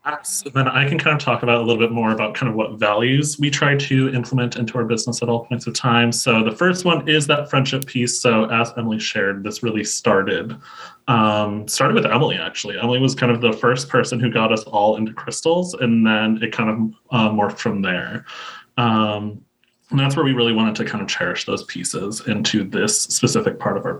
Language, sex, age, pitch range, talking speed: English, male, 20-39, 110-135 Hz, 225 wpm